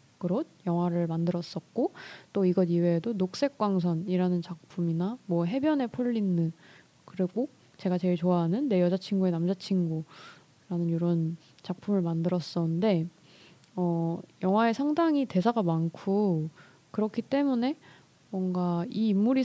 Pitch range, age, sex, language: 170-220 Hz, 20-39, female, Korean